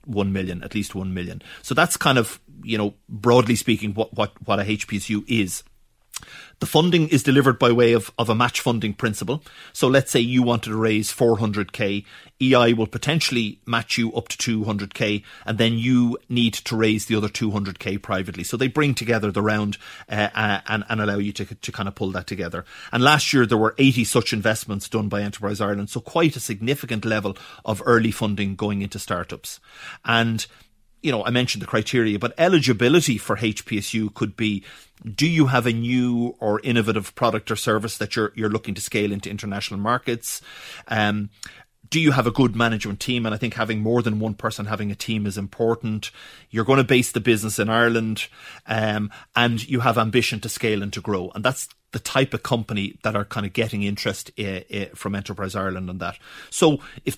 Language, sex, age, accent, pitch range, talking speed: English, male, 30-49, Irish, 105-120 Hz, 200 wpm